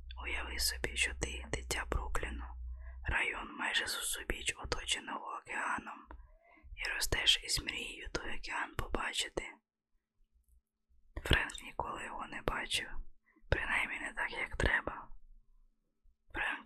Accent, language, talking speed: native, Ukrainian, 105 wpm